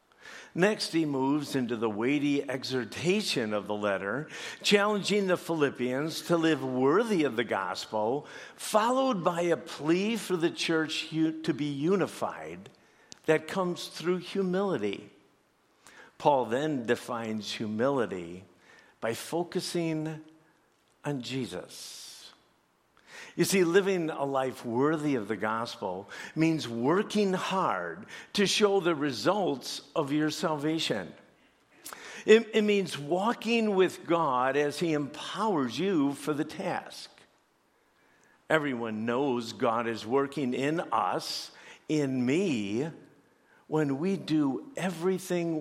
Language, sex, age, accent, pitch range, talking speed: English, male, 60-79, American, 130-180 Hz, 115 wpm